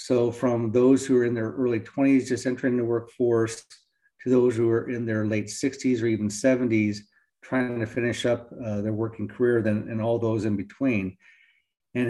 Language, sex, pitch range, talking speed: English, male, 110-130 Hz, 195 wpm